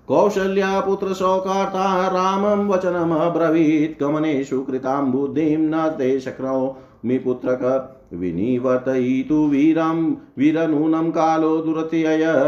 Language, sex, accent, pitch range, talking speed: Hindi, male, native, 130-165 Hz, 75 wpm